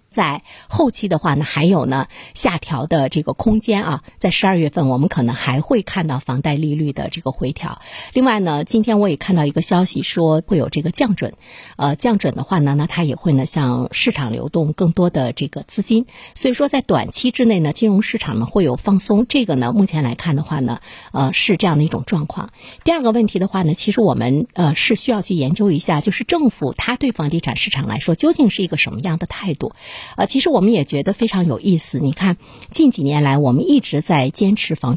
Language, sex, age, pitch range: Chinese, female, 50-69, 150-225 Hz